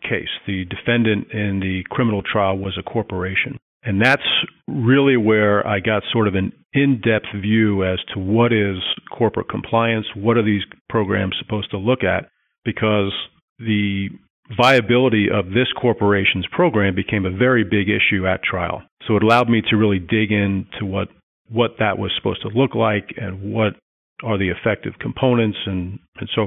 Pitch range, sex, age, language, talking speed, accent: 95-115 Hz, male, 40-59, English, 170 wpm, American